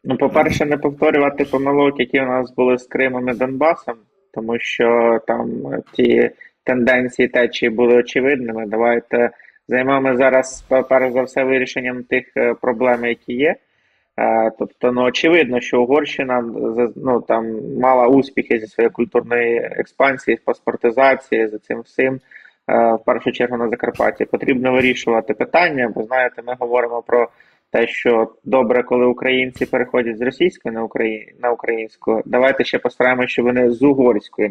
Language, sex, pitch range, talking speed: Ukrainian, male, 115-130 Hz, 135 wpm